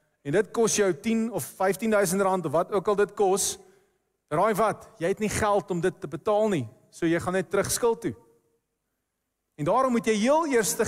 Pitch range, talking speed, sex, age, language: 165-230 Hz, 205 wpm, male, 40-59, English